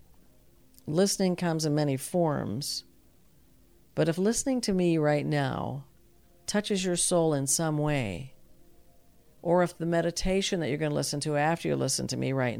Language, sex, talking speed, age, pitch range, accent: English, female, 160 wpm, 50-69, 135-170 Hz, American